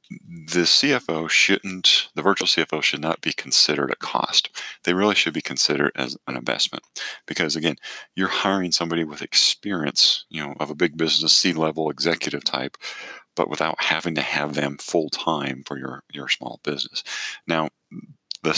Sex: male